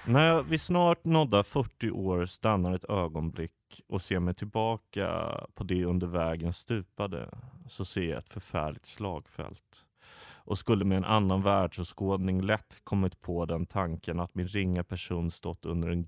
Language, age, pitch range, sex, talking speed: English, 30-49, 90-110 Hz, male, 155 wpm